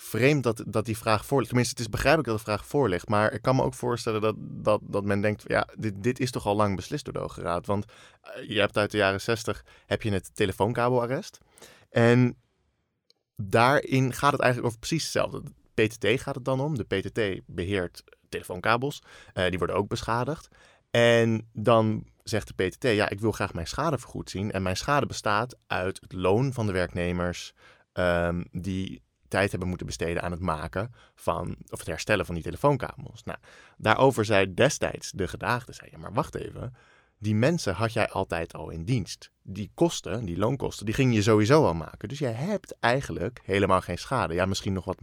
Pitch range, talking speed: 95-125 Hz, 200 wpm